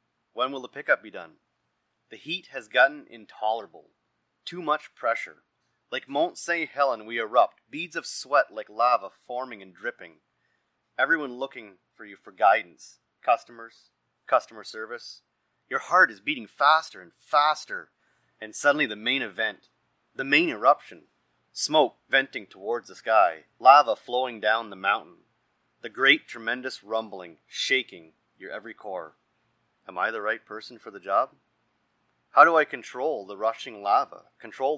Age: 30-49